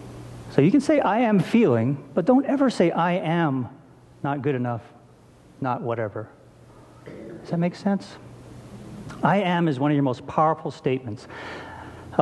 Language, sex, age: English, male, 40-59